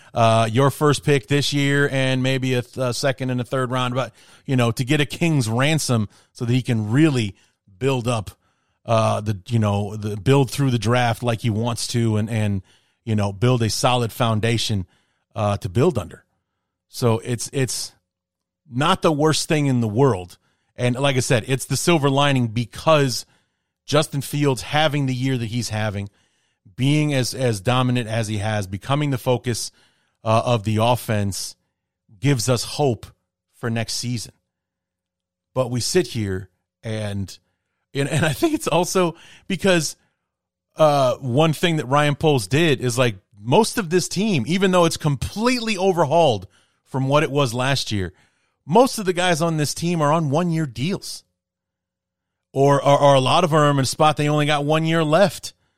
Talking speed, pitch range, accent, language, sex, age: 180 wpm, 110-145 Hz, American, English, male, 30-49